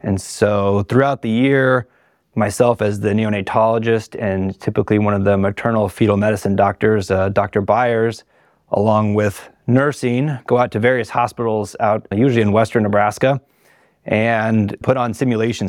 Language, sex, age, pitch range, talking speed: English, male, 20-39, 100-120 Hz, 145 wpm